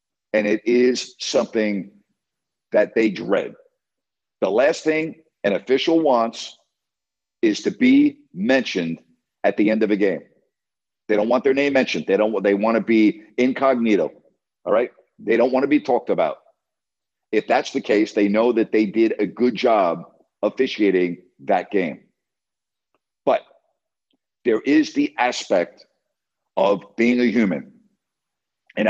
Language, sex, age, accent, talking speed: English, male, 50-69, American, 145 wpm